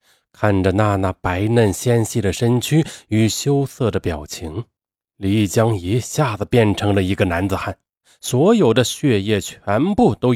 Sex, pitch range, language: male, 95-135 Hz, Chinese